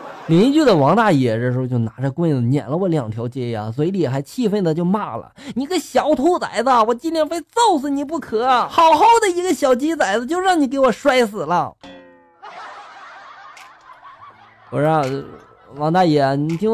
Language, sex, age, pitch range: Chinese, male, 20-39, 160-255 Hz